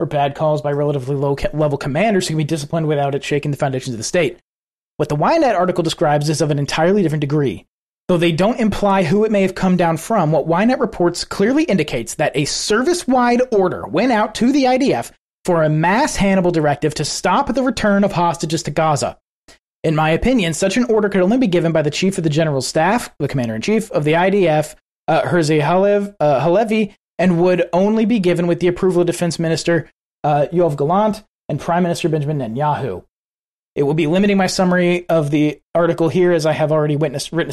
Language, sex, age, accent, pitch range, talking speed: English, male, 30-49, American, 155-195 Hz, 205 wpm